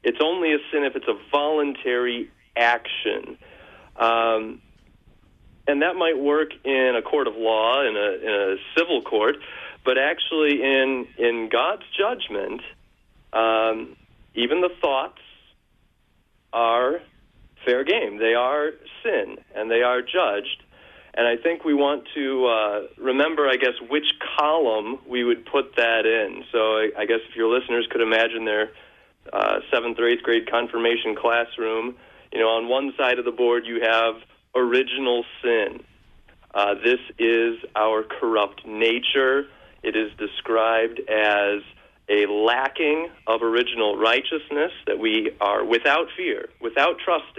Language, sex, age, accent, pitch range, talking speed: English, male, 40-59, American, 115-145 Hz, 145 wpm